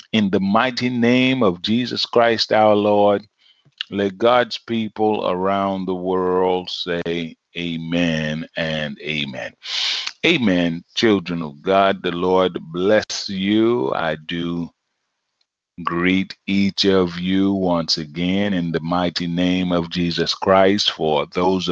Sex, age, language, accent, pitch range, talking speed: male, 30-49, English, American, 85-100 Hz, 120 wpm